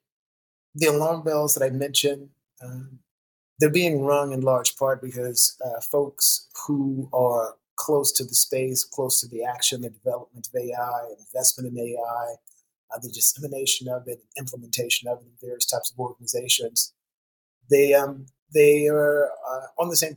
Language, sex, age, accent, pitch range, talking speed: English, male, 30-49, American, 125-145 Hz, 165 wpm